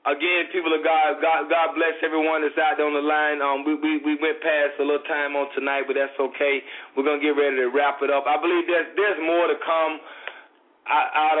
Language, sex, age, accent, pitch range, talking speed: English, male, 20-39, American, 140-165 Hz, 230 wpm